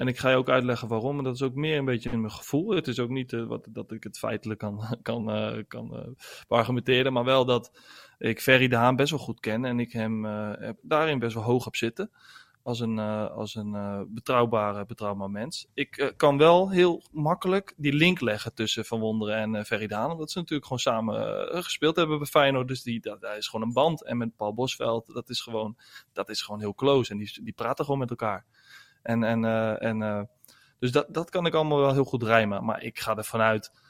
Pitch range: 110-130 Hz